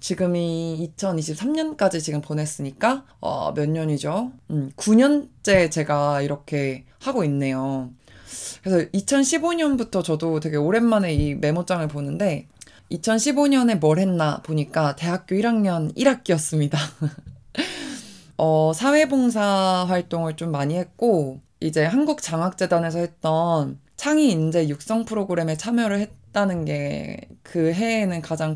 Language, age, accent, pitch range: Korean, 20-39, native, 150-215 Hz